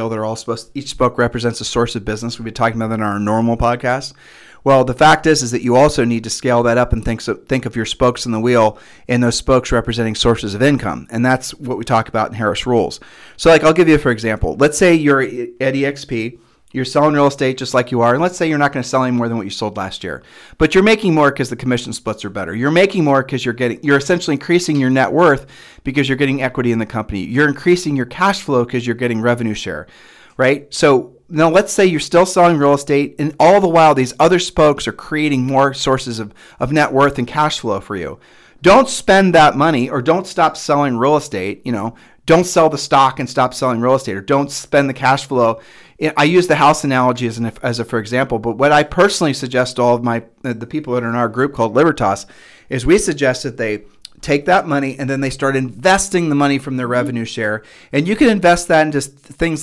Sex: male